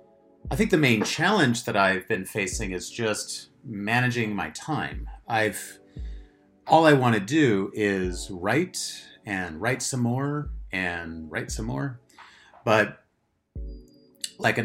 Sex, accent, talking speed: male, American, 135 wpm